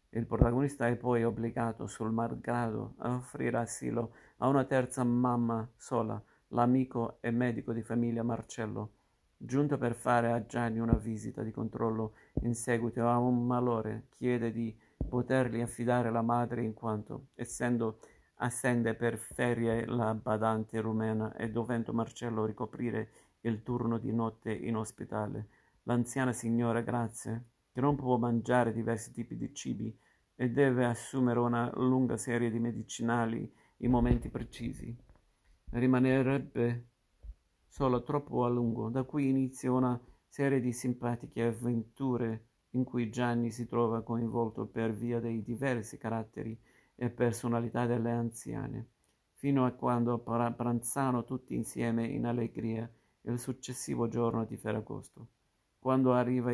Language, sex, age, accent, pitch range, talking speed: Italian, male, 50-69, native, 115-125 Hz, 135 wpm